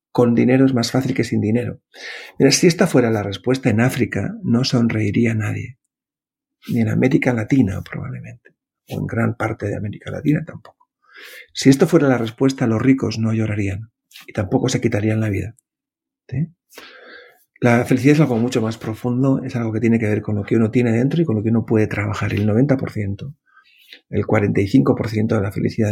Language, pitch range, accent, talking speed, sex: Spanish, 105-130 Hz, Spanish, 185 wpm, male